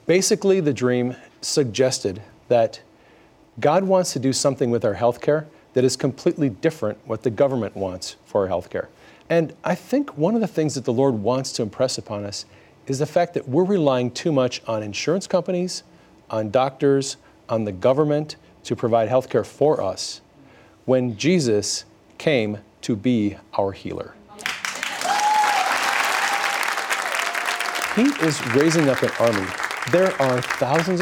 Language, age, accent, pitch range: English, 40-59, American, 115-155 Hz